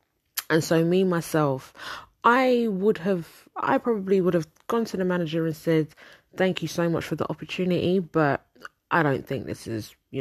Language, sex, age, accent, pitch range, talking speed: English, female, 20-39, British, 140-170 Hz, 180 wpm